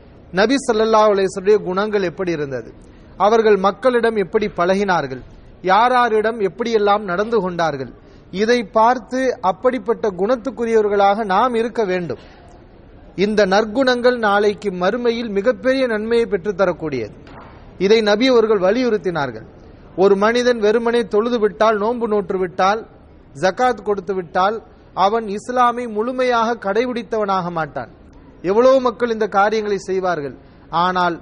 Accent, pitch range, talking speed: Indian, 180-230 Hz, 110 wpm